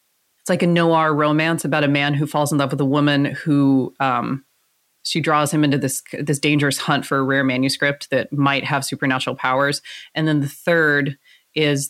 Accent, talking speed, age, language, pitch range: American, 195 wpm, 30-49, English, 135-160 Hz